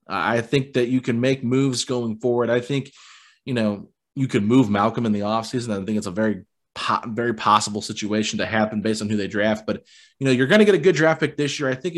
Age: 30-49